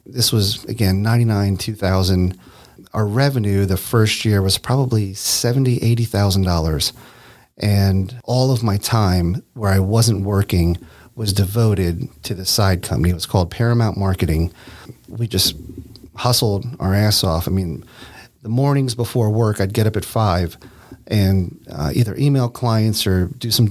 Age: 40-59